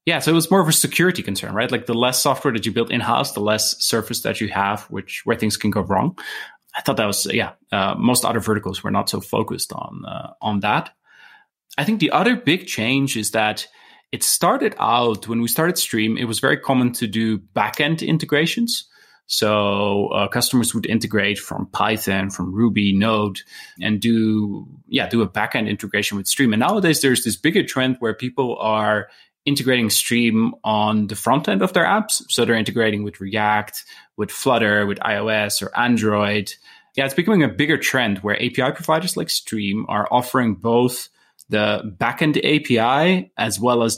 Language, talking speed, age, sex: English, 190 wpm, 20-39, male